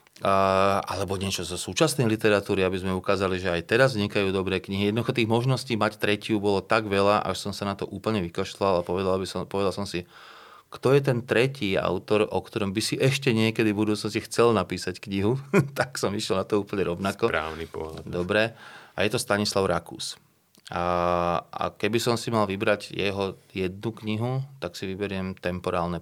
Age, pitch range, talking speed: 30-49, 95-110 Hz, 180 wpm